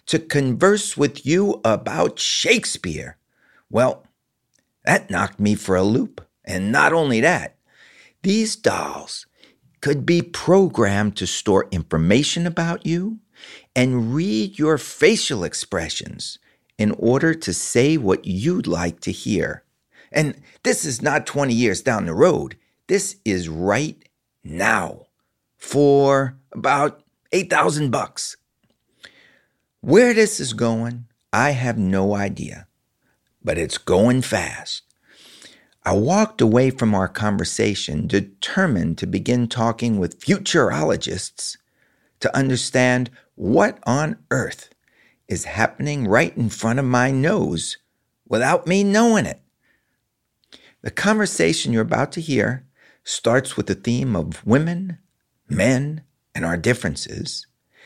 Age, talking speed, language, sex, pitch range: 50-69, 120 wpm, English, male, 115-170 Hz